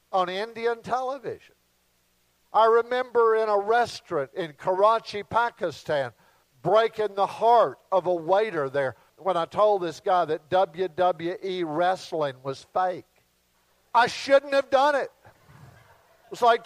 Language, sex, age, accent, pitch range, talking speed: English, male, 50-69, American, 185-255 Hz, 130 wpm